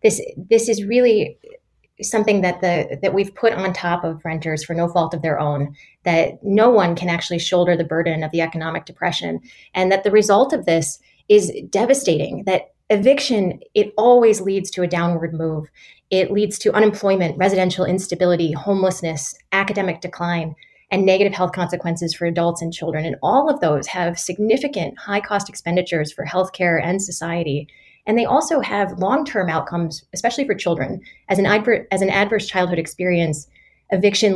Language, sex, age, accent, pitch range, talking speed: English, female, 20-39, American, 165-195 Hz, 165 wpm